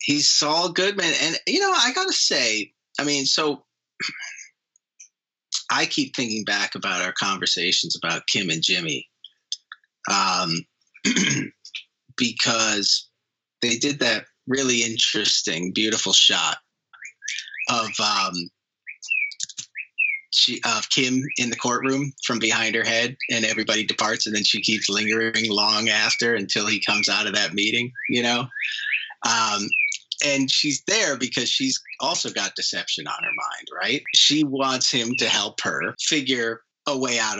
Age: 30-49